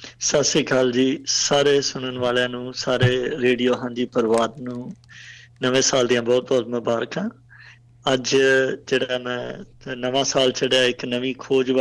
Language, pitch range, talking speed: English, 125-135 Hz, 50 wpm